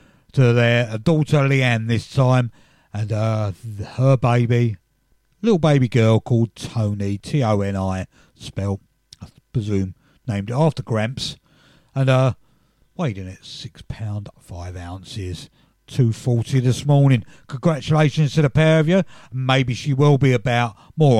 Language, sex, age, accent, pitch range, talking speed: English, male, 50-69, British, 110-145 Hz, 135 wpm